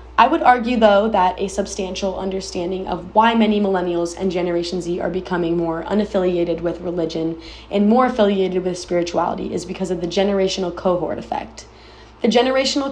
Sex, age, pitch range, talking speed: female, 20-39, 175-210 Hz, 165 wpm